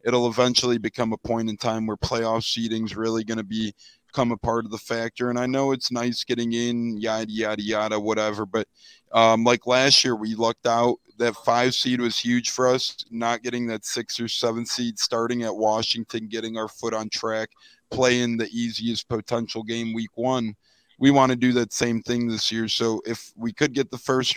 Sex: male